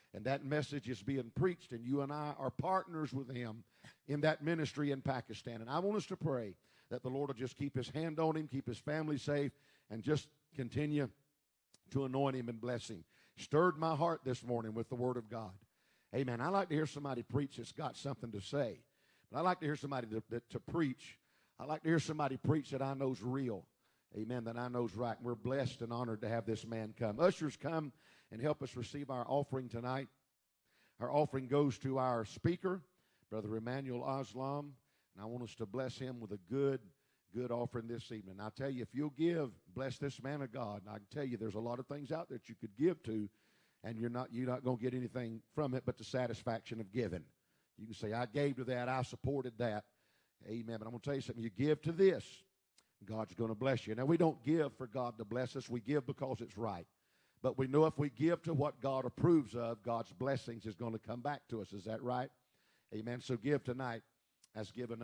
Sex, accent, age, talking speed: male, American, 50-69, 230 wpm